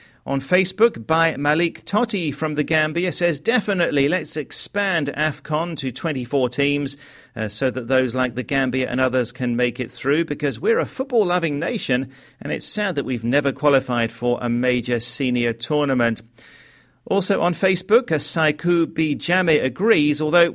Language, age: English, 40-59